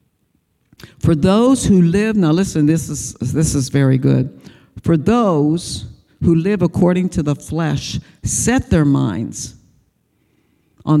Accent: American